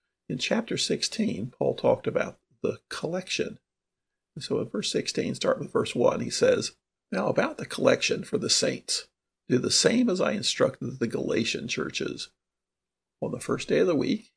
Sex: male